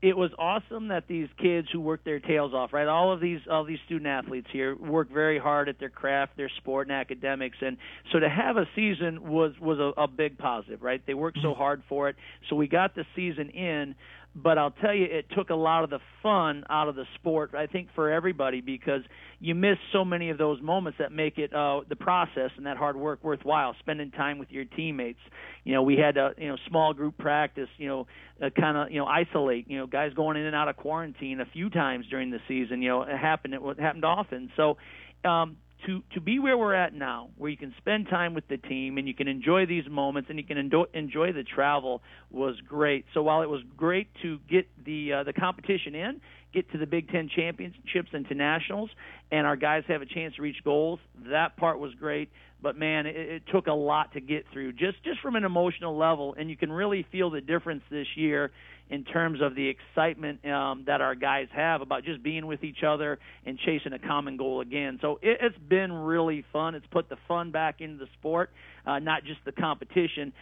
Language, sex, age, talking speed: English, male, 50-69, 230 wpm